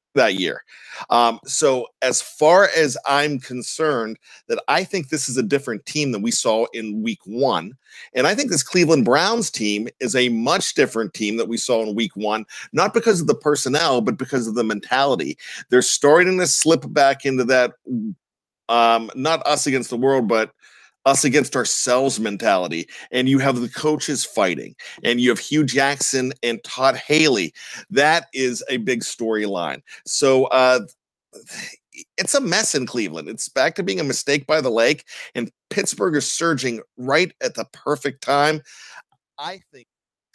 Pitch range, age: 115-150 Hz, 40-59